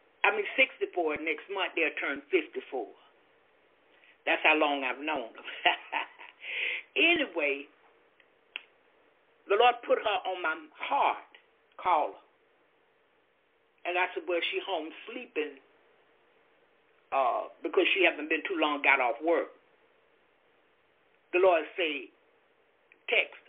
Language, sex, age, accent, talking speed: English, male, 60-79, American, 110 wpm